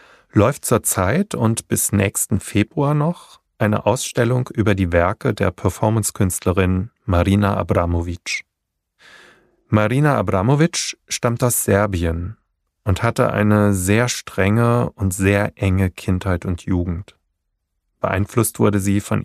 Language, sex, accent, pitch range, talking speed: German, male, German, 90-110 Hz, 110 wpm